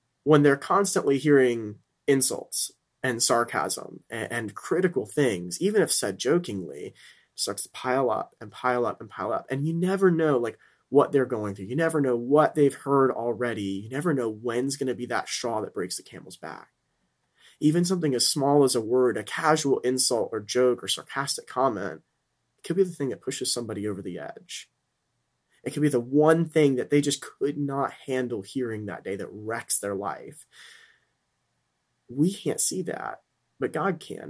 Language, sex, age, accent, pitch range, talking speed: English, male, 30-49, American, 120-155 Hz, 185 wpm